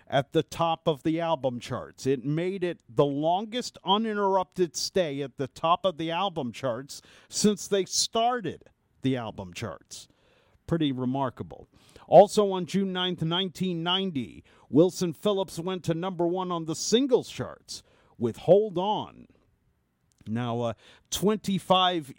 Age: 50-69